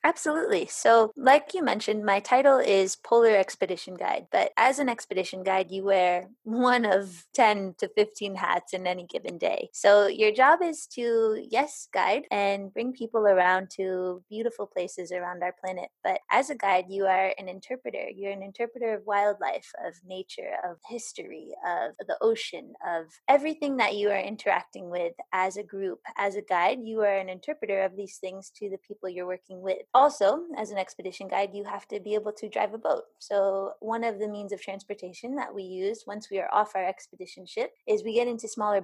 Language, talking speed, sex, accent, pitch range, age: English, 195 wpm, female, American, 190-230 Hz, 20-39